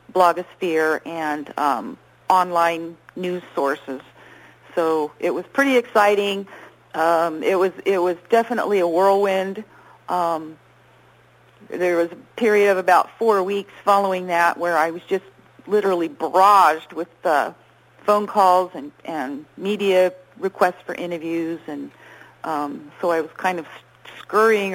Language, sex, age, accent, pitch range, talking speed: English, female, 50-69, American, 170-205 Hz, 135 wpm